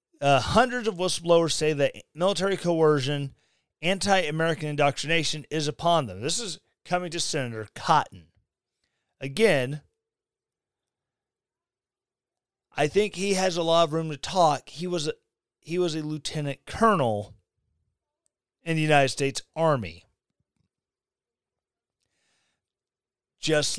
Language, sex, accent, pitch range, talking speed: English, male, American, 125-175 Hz, 105 wpm